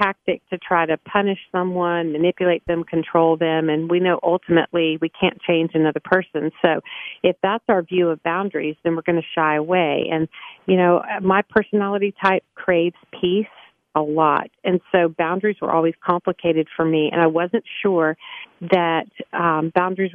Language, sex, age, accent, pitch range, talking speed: English, female, 40-59, American, 165-195 Hz, 170 wpm